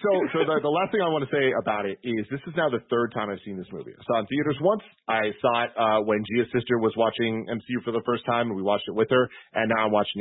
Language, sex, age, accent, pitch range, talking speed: English, male, 30-49, American, 110-150 Hz, 310 wpm